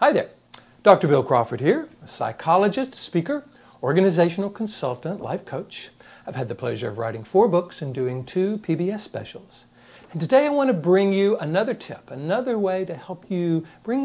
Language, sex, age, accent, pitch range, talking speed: English, male, 60-79, American, 130-200 Hz, 175 wpm